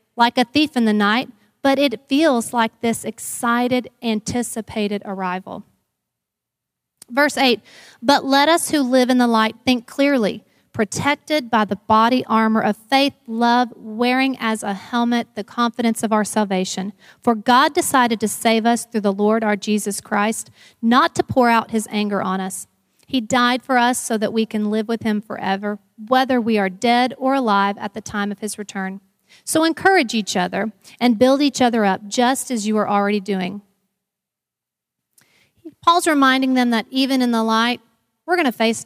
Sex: female